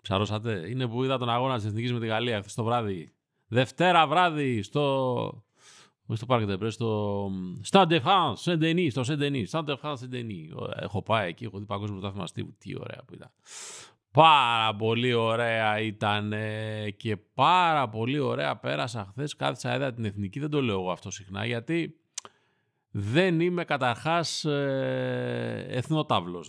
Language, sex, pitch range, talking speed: Greek, male, 105-150 Hz, 150 wpm